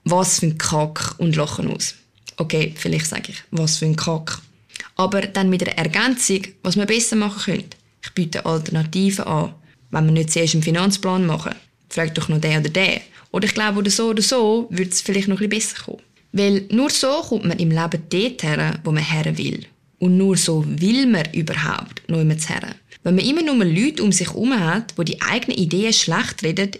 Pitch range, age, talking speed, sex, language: 160-210 Hz, 20-39, 210 wpm, female, German